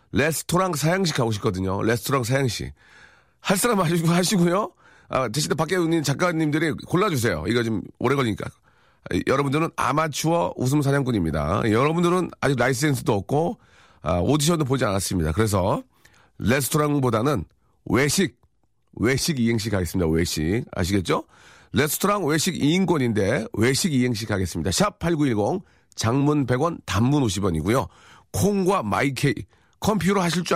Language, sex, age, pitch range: Korean, male, 40-59, 110-170 Hz